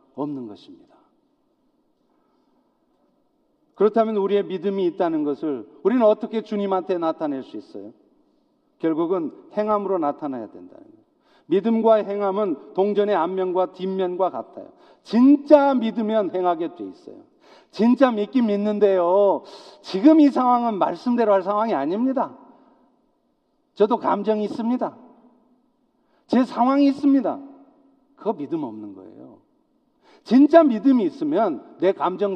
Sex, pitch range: male, 200-310 Hz